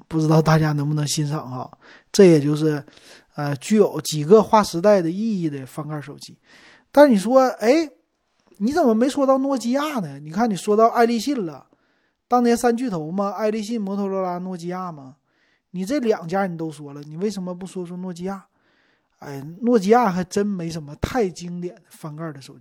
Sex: male